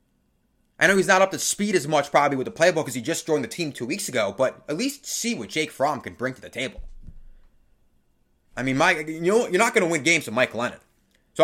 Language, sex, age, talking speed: English, male, 20-39, 255 wpm